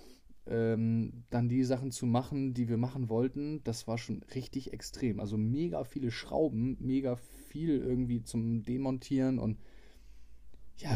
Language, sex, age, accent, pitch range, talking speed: German, male, 20-39, German, 110-125 Hz, 135 wpm